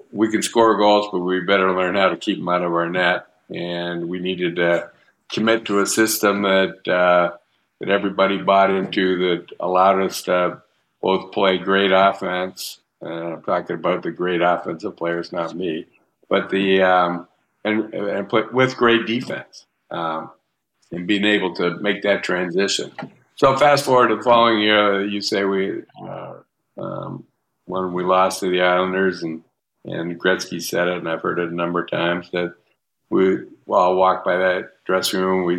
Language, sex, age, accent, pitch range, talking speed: English, male, 60-79, American, 90-100 Hz, 180 wpm